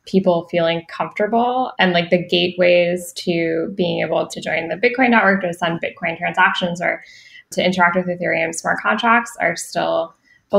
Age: 10-29